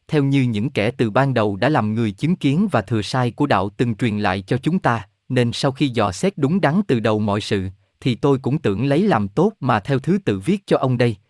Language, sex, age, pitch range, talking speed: Vietnamese, male, 20-39, 110-160 Hz, 260 wpm